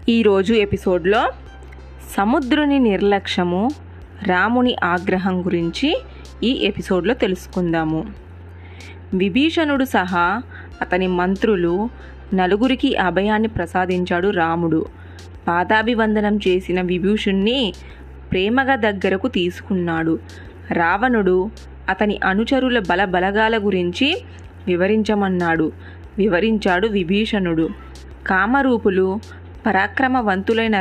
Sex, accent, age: female, native, 20-39